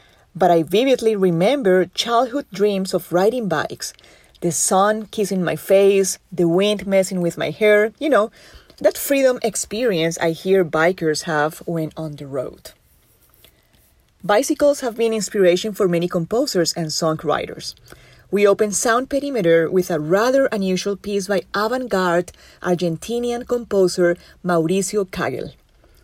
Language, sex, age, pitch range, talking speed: English, female, 30-49, 170-215 Hz, 130 wpm